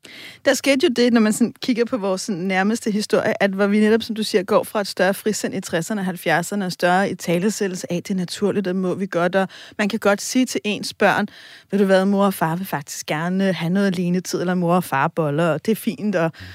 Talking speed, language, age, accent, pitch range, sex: 245 wpm, Danish, 30-49, native, 190-230 Hz, female